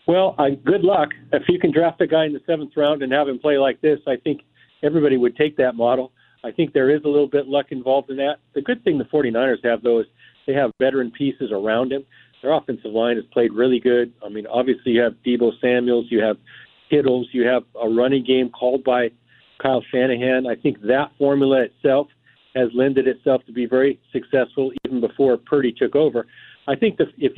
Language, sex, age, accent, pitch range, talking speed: English, male, 50-69, American, 125-155 Hz, 220 wpm